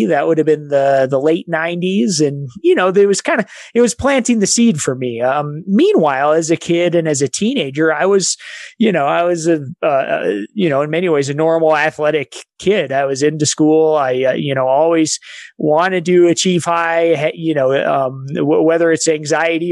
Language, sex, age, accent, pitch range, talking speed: English, male, 30-49, American, 145-170 Hz, 205 wpm